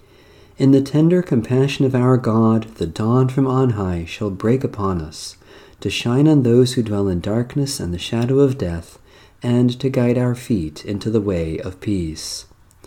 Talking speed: 180 wpm